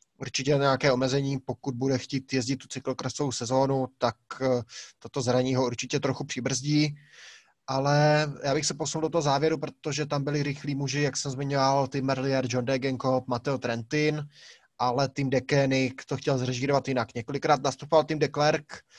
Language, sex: Czech, male